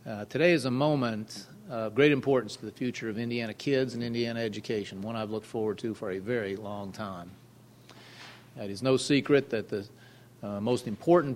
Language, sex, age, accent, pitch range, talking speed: English, male, 40-59, American, 115-135 Hz, 190 wpm